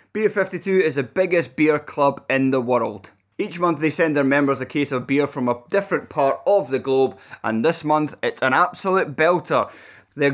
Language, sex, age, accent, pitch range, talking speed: English, male, 20-39, British, 140-180 Hz, 205 wpm